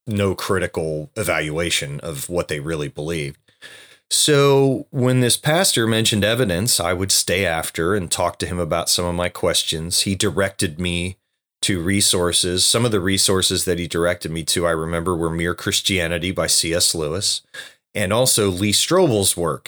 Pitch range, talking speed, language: 85-105 Hz, 165 wpm, English